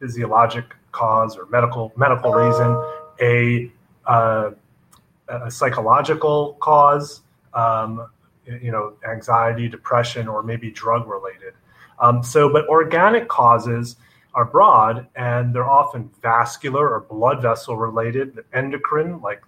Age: 30-49